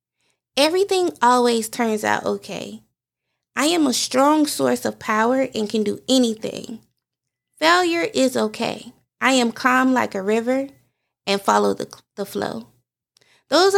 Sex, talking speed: female, 135 wpm